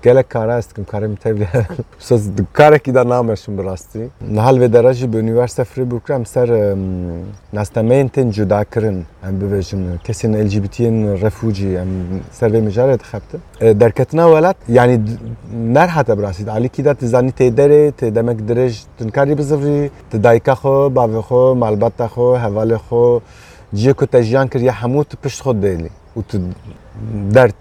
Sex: male